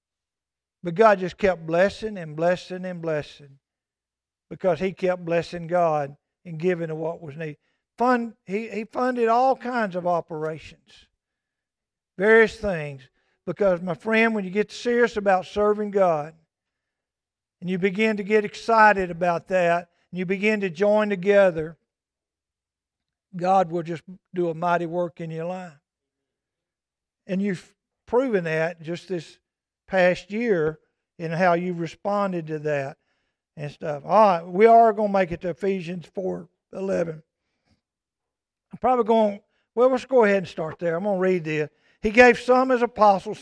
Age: 50-69